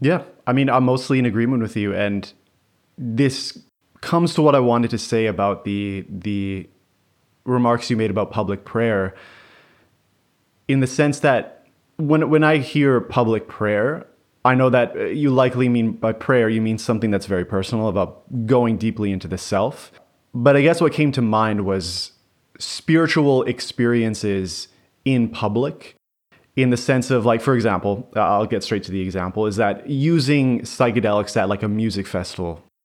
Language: English